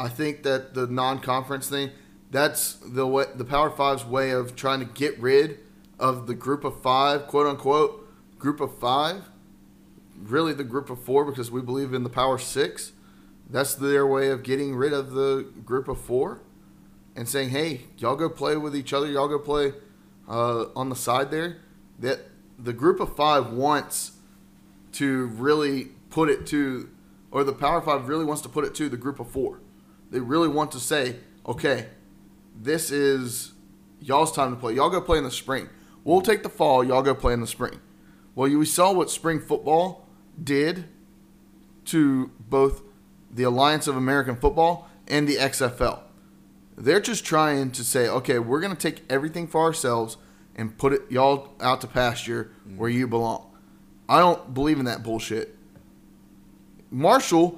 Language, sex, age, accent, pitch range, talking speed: English, male, 30-49, American, 125-150 Hz, 175 wpm